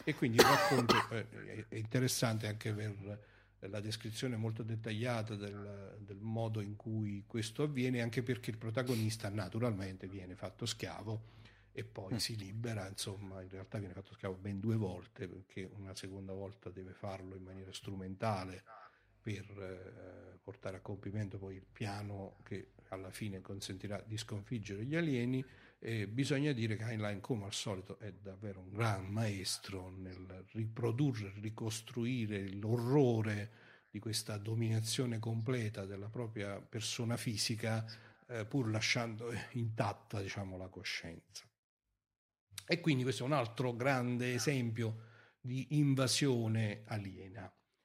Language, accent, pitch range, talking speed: Italian, native, 100-120 Hz, 135 wpm